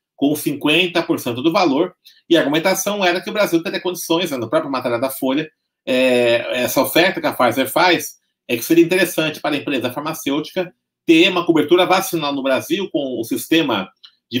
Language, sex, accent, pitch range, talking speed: Portuguese, male, Brazilian, 130-190 Hz, 190 wpm